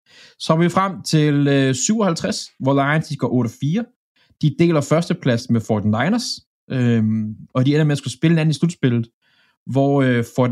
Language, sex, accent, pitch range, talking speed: Danish, male, native, 120-155 Hz, 185 wpm